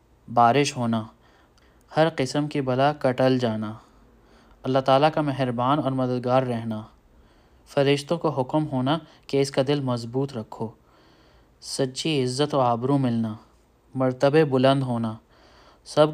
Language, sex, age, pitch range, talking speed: Urdu, male, 20-39, 115-140 Hz, 125 wpm